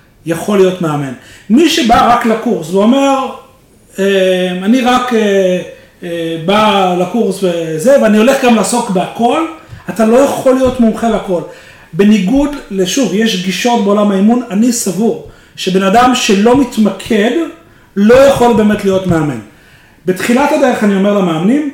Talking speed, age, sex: 130 wpm, 40-59, male